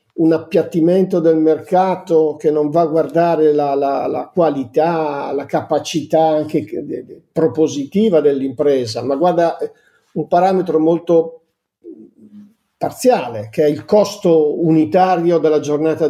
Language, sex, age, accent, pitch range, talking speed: Italian, male, 50-69, native, 150-180 Hz, 115 wpm